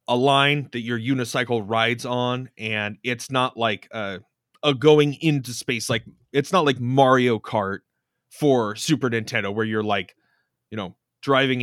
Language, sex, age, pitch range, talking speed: English, male, 30-49, 110-135 Hz, 160 wpm